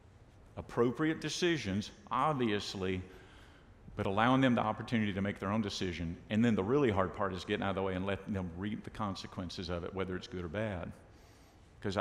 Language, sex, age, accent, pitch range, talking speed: English, male, 50-69, American, 95-125 Hz, 195 wpm